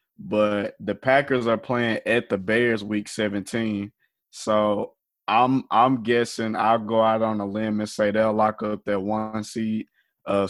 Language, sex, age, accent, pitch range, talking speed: English, male, 20-39, American, 105-120 Hz, 165 wpm